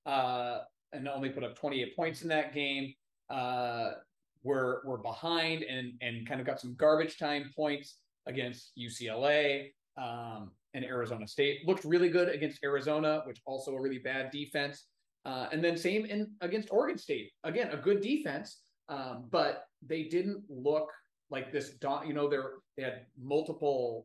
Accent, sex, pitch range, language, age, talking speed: American, male, 130-160 Hz, English, 30-49, 160 wpm